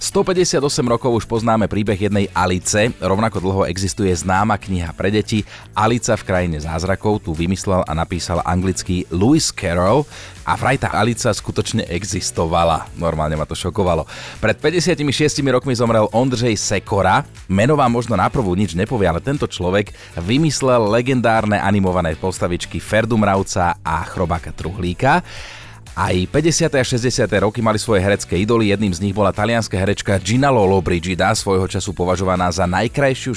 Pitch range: 90-115 Hz